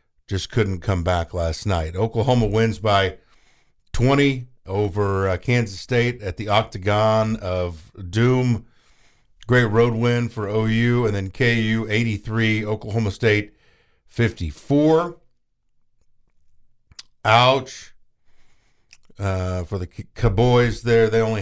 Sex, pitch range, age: male, 95-120 Hz, 50-69